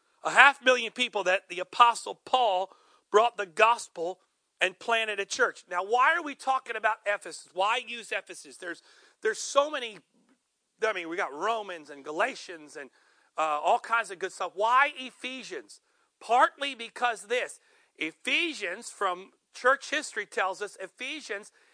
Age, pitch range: 40-59, 195-270 Hz